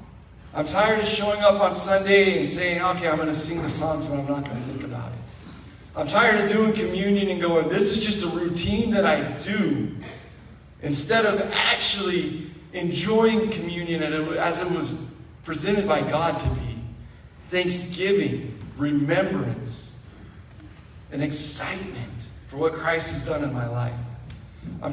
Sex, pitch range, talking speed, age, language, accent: male, 145-210 Hz, 155 wpm, 40-59, English, American